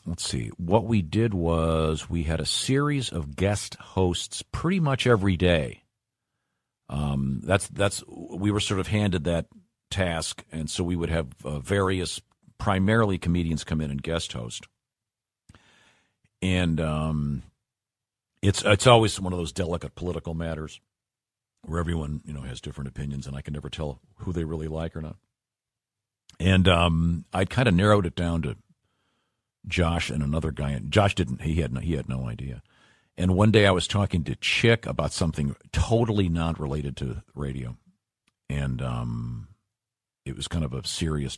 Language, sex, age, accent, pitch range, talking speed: English, male, 50-69, American, 75-100 Hz, 165 wpm